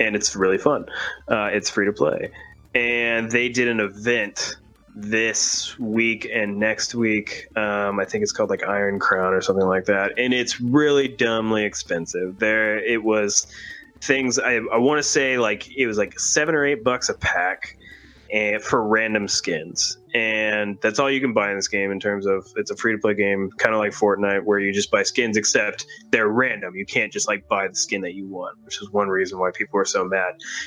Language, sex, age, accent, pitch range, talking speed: English, male, 20-39, American, 100-120 Hz, 210 wpm